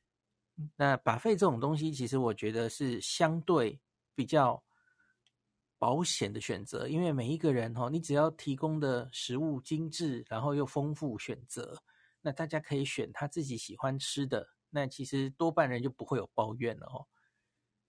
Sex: male